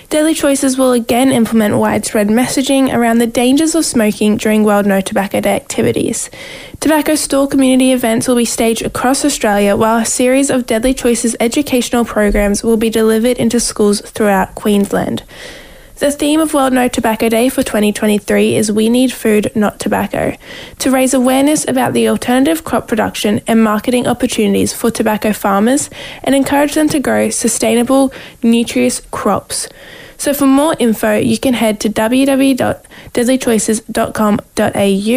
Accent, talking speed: Australian, 150 wpm